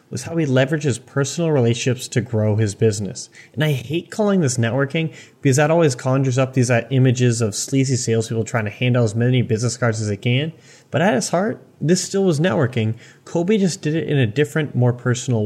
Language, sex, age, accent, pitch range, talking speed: English, male, 30-49, American, 120-155 Hz, 215 wpm